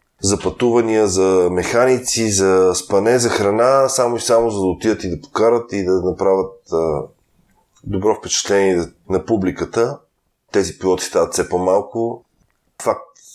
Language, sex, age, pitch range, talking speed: Bulgarian, male, 20-39, 85-100 Hz, 135 wpm